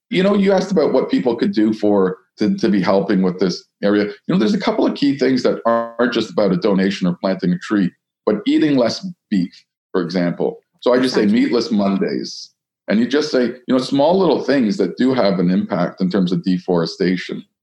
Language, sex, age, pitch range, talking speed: English, male, 40-59, 85-105 Hz, 220 wpm